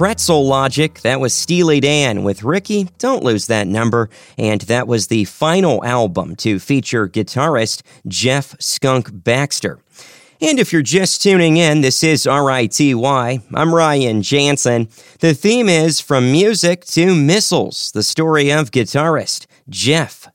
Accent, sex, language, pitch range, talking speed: American, male, English, 120-165 Hz, 140 wpm